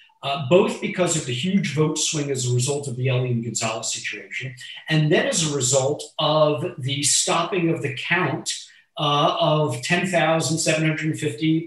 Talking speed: 155 wpm